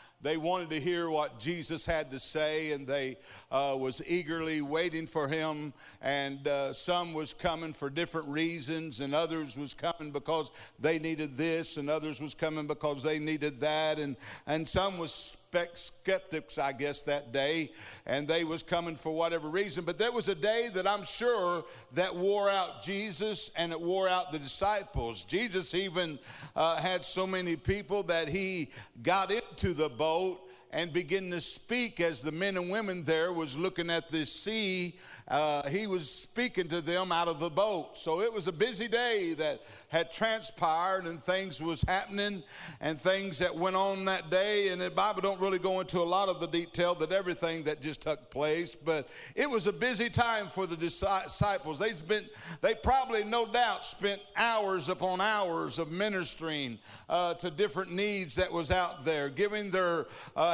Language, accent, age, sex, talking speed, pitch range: English, American, 60-79, male, 180 wpm, 155-195 Hz